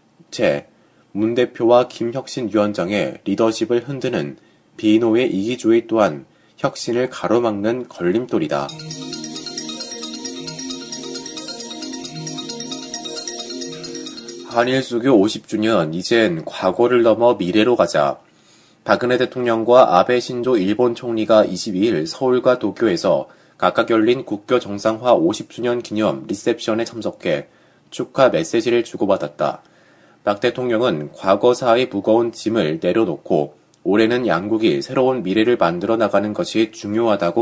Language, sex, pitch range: Korean, male, 110-125 Hz